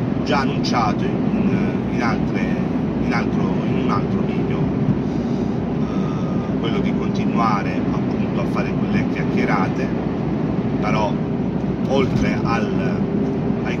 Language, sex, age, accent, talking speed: Italian, male, 40-59, native, 85 wpm